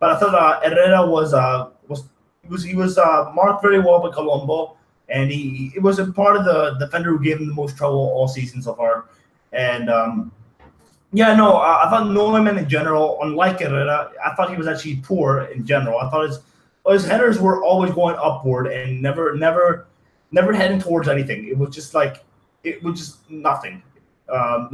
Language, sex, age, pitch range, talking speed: English, male, 20-39, 140-185 Hz, 200 wpm